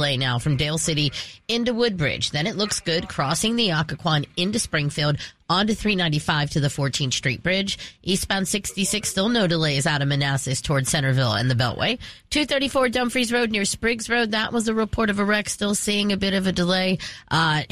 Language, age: English, 30-49